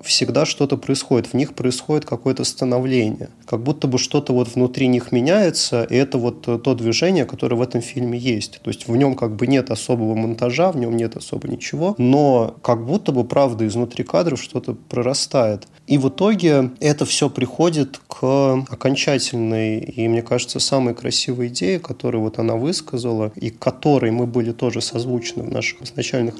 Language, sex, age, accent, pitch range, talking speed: Russian, male, 20-39, native, 120-140 Hz, 175 wpm